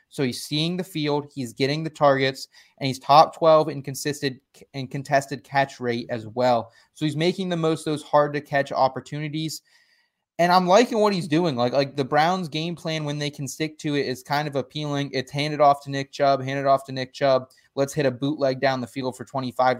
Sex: male